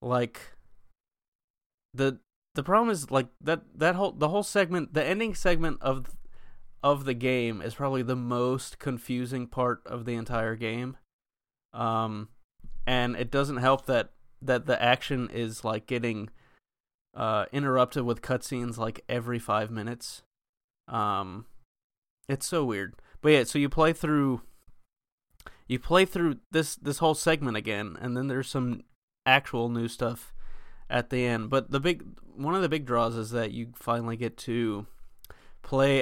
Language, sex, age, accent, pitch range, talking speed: English, male, 20-39, American, 120-140 Hz, 155 wpm